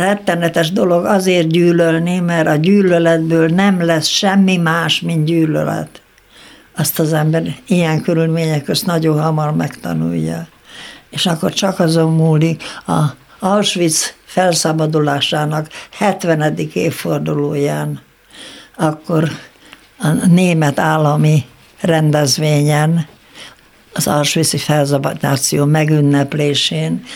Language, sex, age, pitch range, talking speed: Hungarian, female, 60-79, 145-170 Hz, 90 wpm